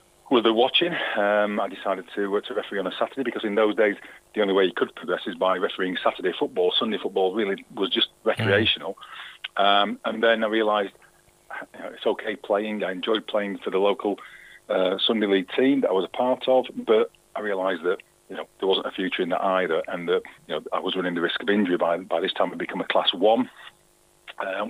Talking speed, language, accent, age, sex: 230 wpm, English, British, 40-59, male